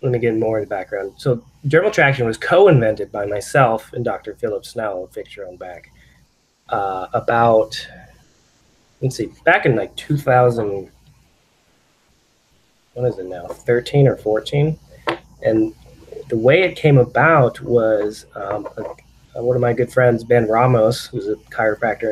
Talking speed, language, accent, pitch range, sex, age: 155 wpm, English, American, 105-130 Hz, male, 20-39